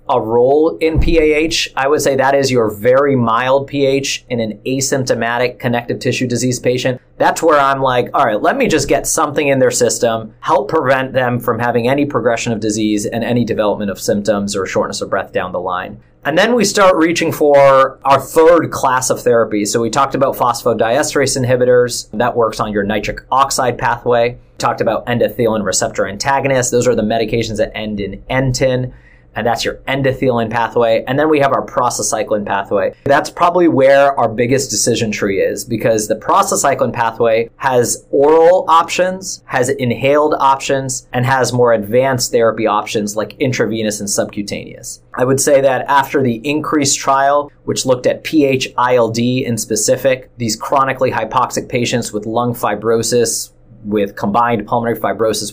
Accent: American